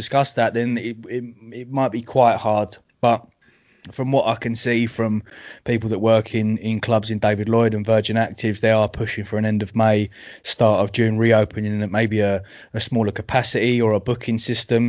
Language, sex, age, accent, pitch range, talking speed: English, male, 20-39, British, 105-115 Hz, 215 wpm